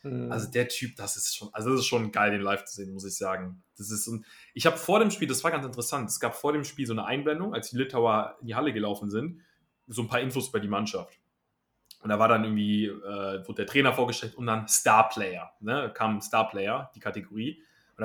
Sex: male